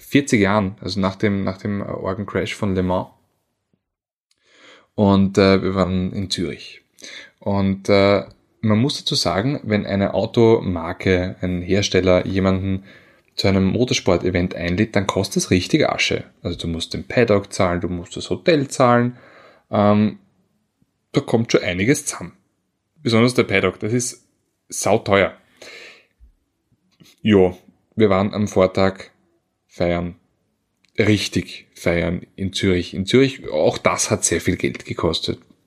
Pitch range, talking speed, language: 90-110 Hz, 135 wpm, German